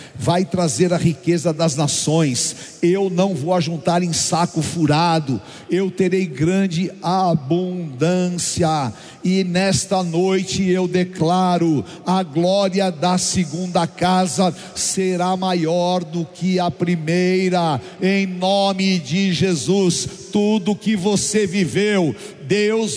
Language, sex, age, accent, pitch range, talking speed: Portuguese, male, 60-79, Brazilian, 180-220 Hz, 110 wpm